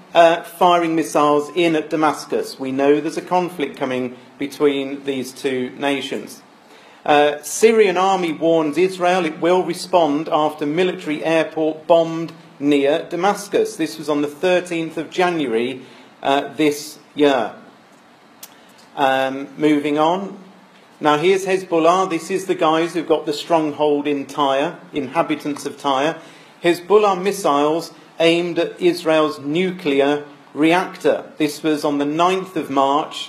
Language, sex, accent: English, male, British